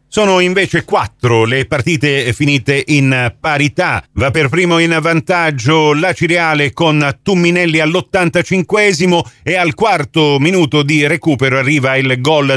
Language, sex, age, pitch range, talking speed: Italian, male, 40-59, 135-170 Hz, 130 wpm